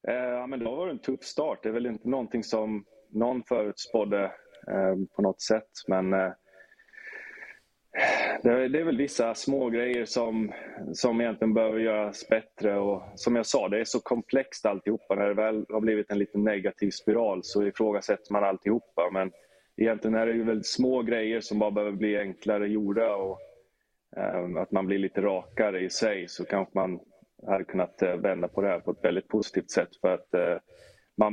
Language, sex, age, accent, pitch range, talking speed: Swedish, male, 20-39, native, 100-115 Hz, 190 wpm